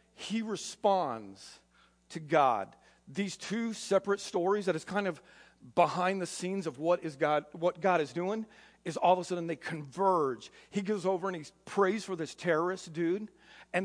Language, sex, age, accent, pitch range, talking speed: English, male, 50-69, American, 175-210 Hz, 180 wpm